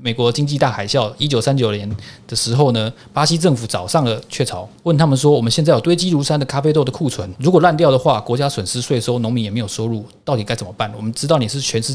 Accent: native